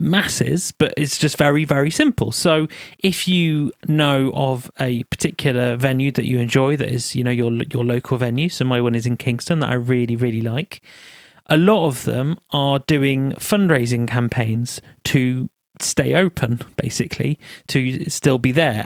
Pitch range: 125-150 Hz